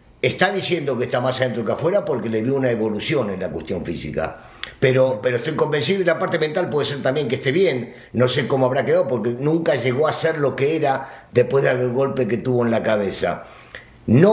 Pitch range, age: 130-185 Hz, 50-69